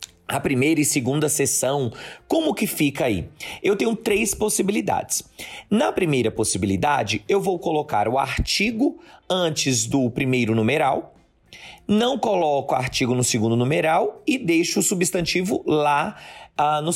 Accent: Brazilian